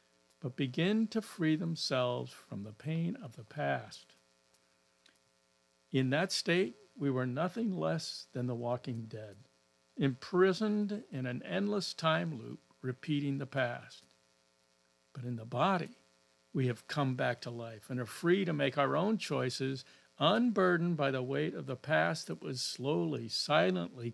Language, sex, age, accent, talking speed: English, male, 60-79, American, 150 wpm